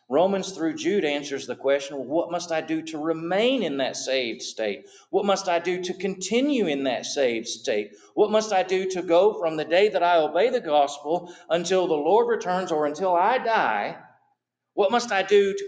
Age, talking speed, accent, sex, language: 50-69, 205 wpm, American, male, English